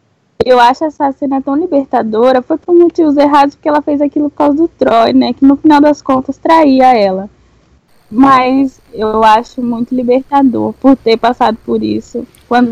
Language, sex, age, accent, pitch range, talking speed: Portuguese, female, 10-29, Brazilian, 215-270 Hz, 175 wpm